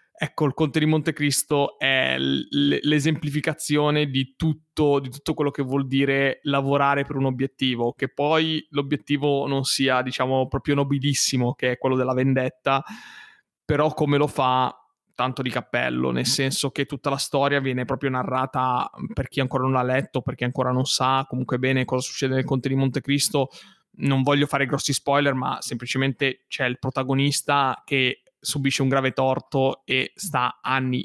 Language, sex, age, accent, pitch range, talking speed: Italian, male, 20-39, native, 130-140 Hz, 165 wpm